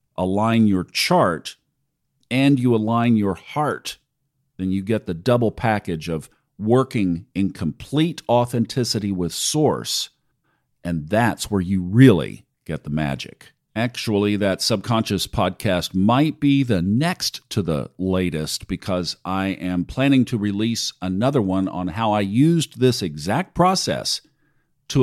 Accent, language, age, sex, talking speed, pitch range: American, English, 50-69, male, 135 wpm, 90-120 Hz